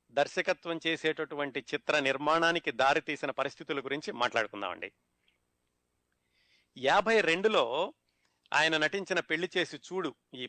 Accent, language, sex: native, Telugu, male